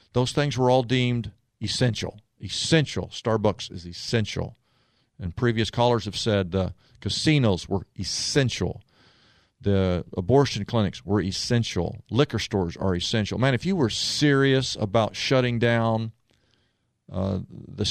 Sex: male